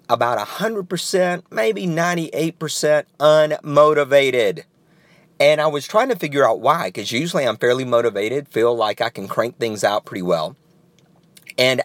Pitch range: 125-170 Hz